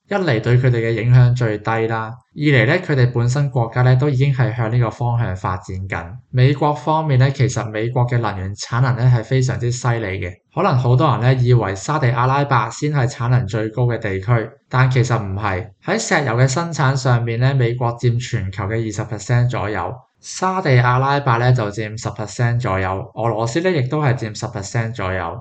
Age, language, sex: 20-39, Chinese, male